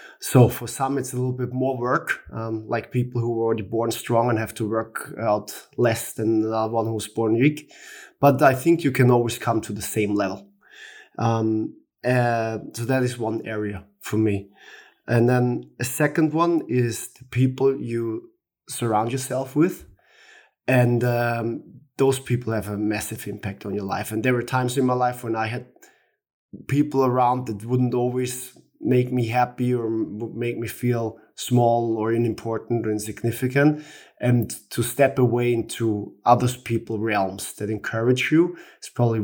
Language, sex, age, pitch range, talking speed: English, male, 20-39, 110-130 Hz, 175 wpm